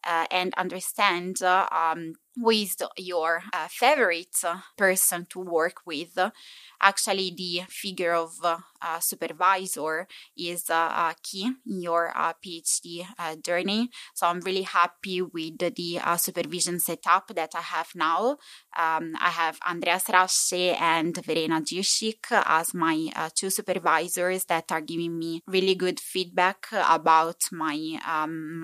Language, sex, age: English, female, 20-39